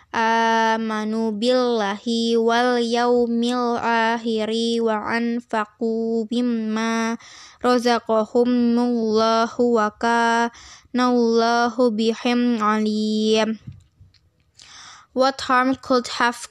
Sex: female